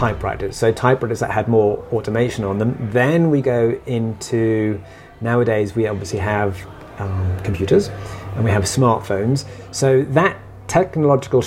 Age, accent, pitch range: 30-49, British, 105-135 Hz